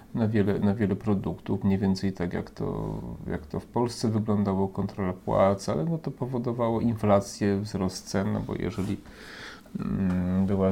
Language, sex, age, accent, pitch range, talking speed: Polish, male, 30-49, native, 100-110 Hz, 160 wpm